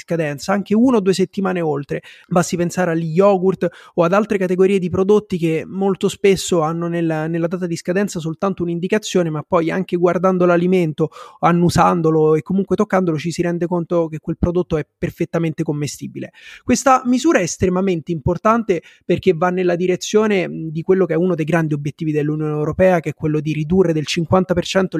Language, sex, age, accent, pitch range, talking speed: Italian, male, 30-49, native, 160-190 Hz, 175 wpm